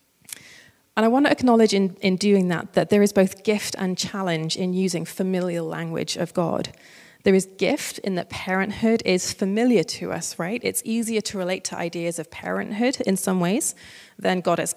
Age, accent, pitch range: 30-49, British, 175-215 Hz